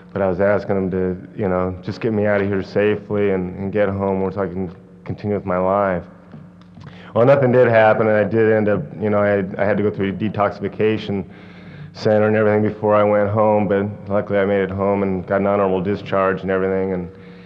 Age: 30-49